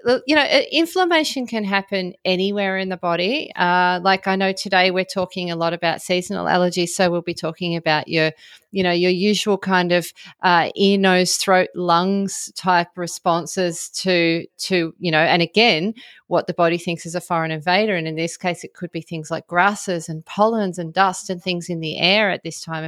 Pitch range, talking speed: 165-195 Hz, 200 wpm